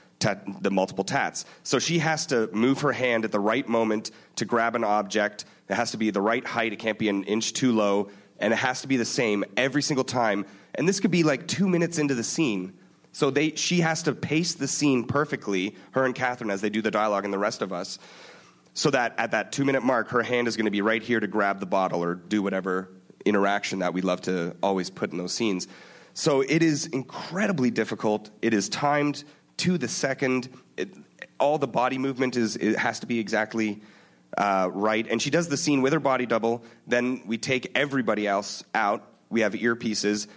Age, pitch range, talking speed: 30-49, 100-130 Hz, 220 wpm